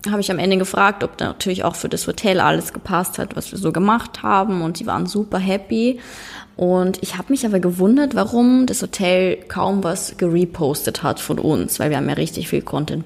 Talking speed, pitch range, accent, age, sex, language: 215 wpm, 180-235 Hz, German, 20-39, female, German